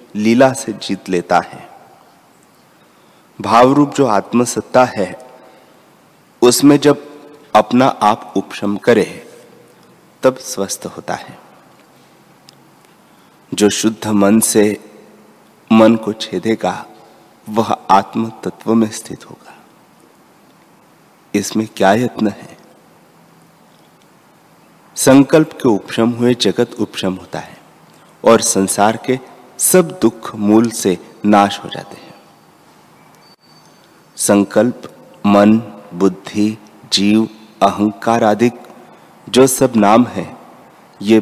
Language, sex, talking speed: Hindi, male, 100 wpm